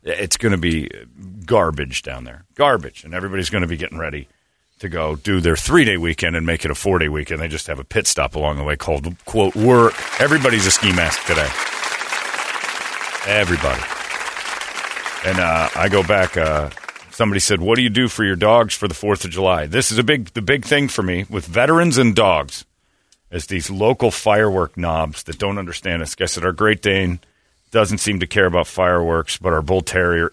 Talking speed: 200 wpm